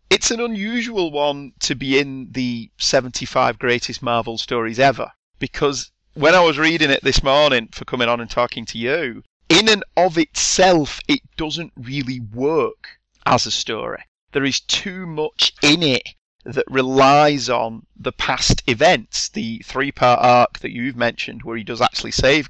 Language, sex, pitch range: English, male, 125-155 Hz